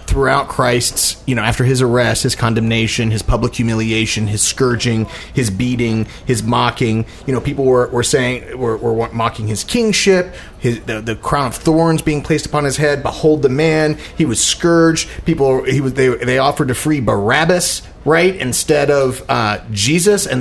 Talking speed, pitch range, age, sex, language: 180 wpm, 115-155 Hz, 30-49, male, English